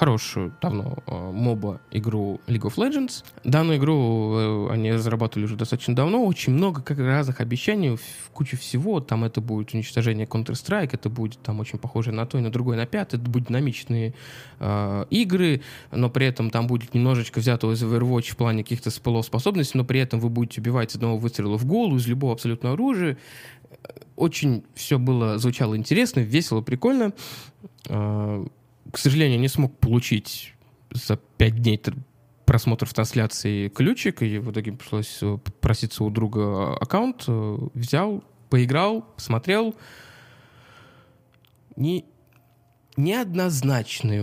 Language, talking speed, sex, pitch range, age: Russian, 140 wpm, male, 115-140 Hz, 20-39